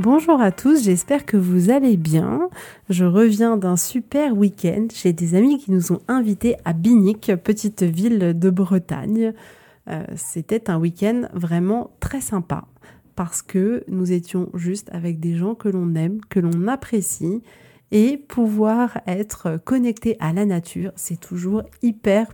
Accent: French